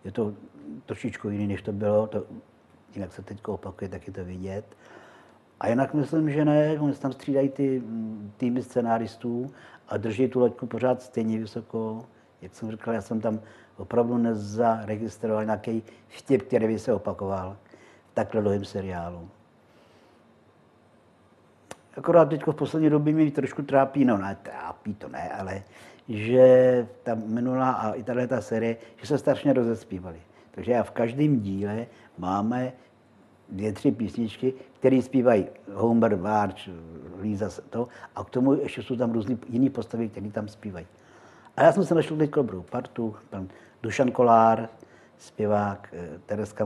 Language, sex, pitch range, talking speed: Czech, male, 100-125 Hz, 150 wpm